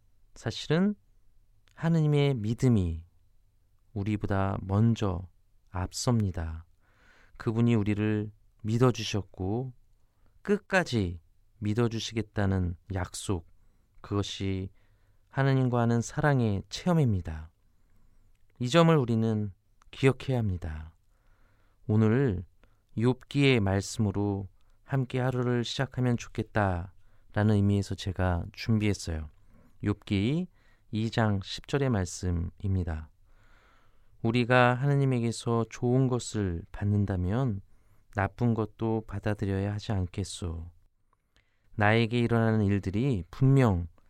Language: Korean